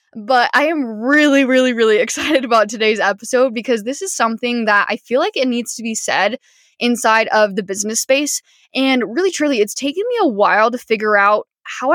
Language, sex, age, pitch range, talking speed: English, female, 10-29, 210-265 Hz, 200 wpm